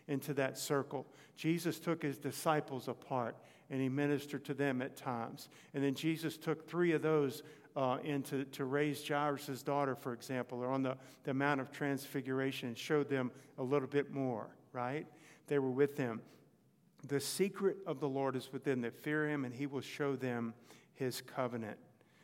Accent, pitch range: American, 130-150 Hz